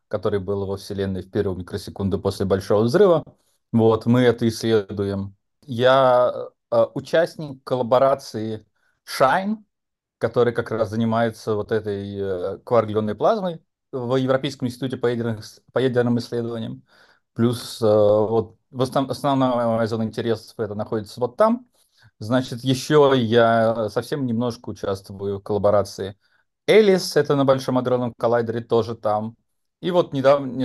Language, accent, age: Russian, native, 30-49